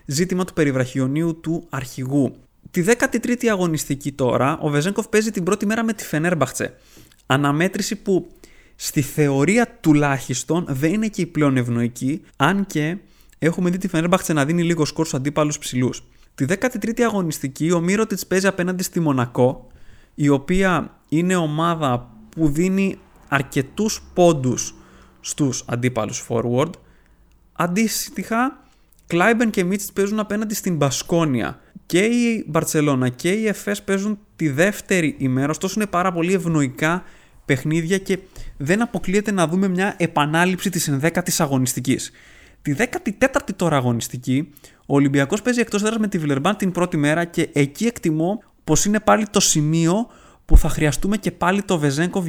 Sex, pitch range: male, 140-195 Hz